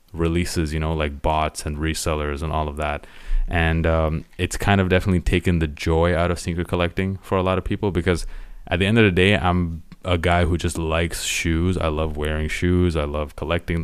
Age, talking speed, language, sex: 20-39, 215 wpm, English, male